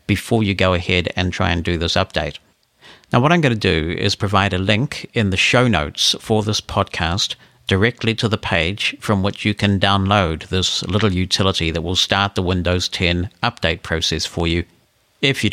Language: English